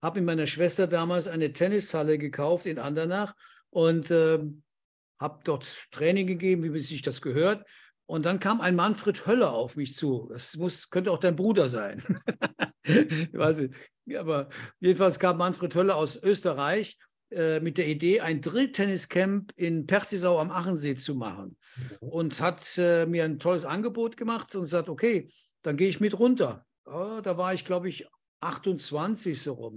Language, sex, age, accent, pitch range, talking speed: German, male, 60-79, German, 160-200 Hz, 170 wpm